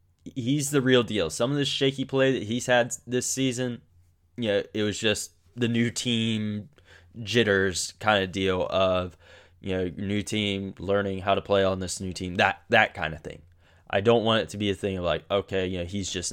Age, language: 10-29, English